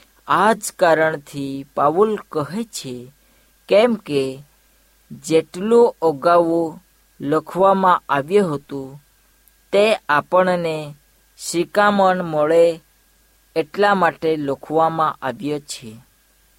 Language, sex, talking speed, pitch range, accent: Hindi, female, 40 wpm, 145-185 Hz, native